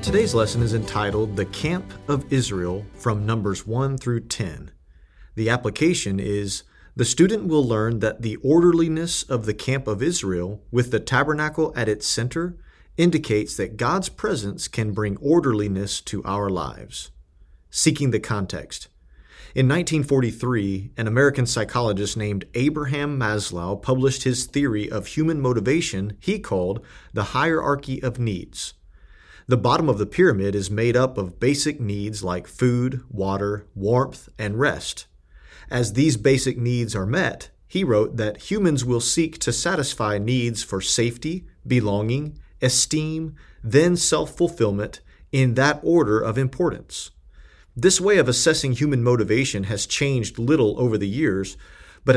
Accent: American